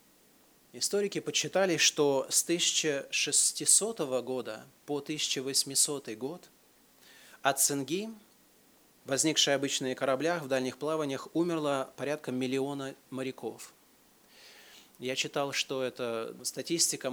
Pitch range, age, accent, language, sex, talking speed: 120-145 Hz, 30-49, native, Russian, male, 90 wpm